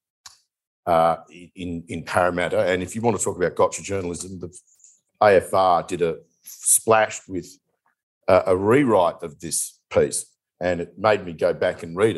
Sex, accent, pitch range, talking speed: male, Australian, 90-120 Hz, 165 wpm